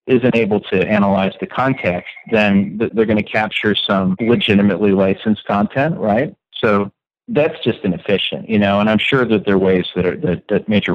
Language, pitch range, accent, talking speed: English, 95-110 Hz, American, 185 wpm